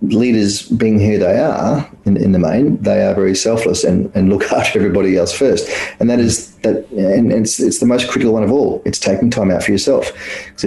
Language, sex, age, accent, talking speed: English, male, 30-49, Australian, 225 wpm